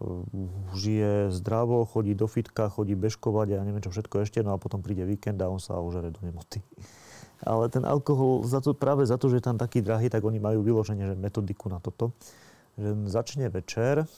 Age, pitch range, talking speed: 30-49, 100-125 Hz, 205 wpm